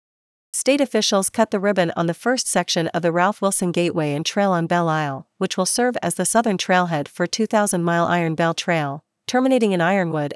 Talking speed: 195 wpm